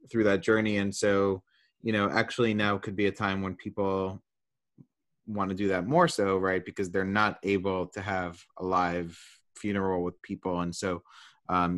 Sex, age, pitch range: male, 30-49, 90-105 Hz